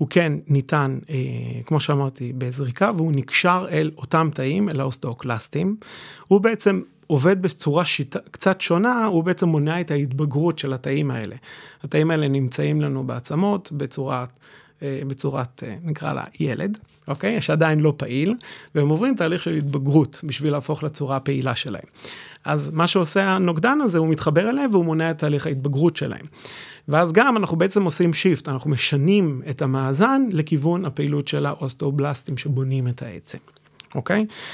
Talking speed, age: 150 wpm, 30-49